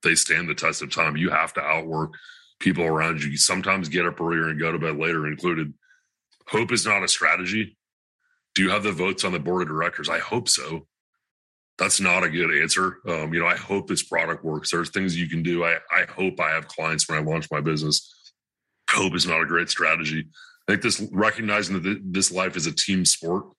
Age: 30-49